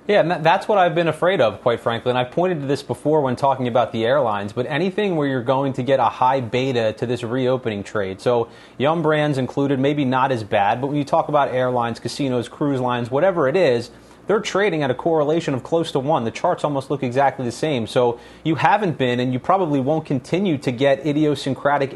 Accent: American